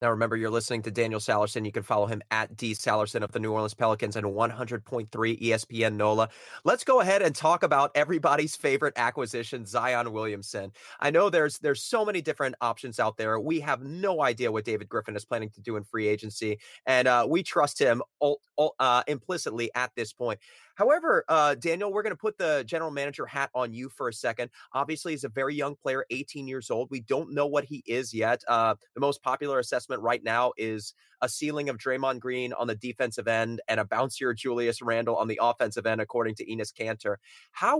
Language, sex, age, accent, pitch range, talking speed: English, male, 30-49, American, 115-145 Hz, 210 wpm